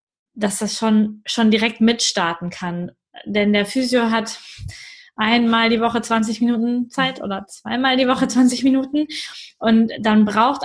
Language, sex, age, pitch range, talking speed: German, female, 20-39, 205-240 Hz, 145 wpm